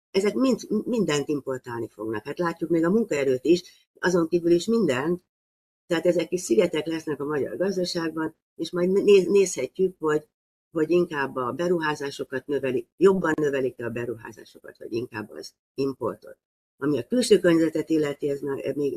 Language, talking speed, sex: Hungarian, 150 wpm, female